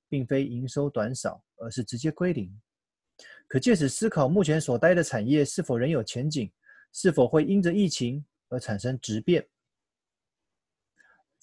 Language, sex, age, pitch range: Chinese, male, 30-49, 125-170 Hz